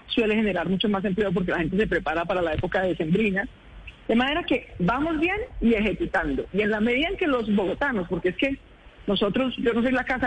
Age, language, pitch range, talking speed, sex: 40-59, Spanish, 190-265 Hz, 230 wpm, female